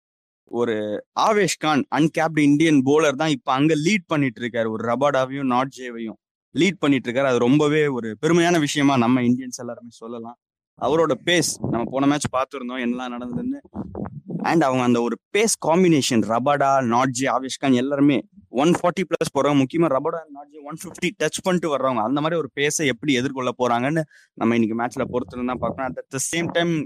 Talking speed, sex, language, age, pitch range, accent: 160 wpm, male, Tamil, 20-39, 120-155 Hz, native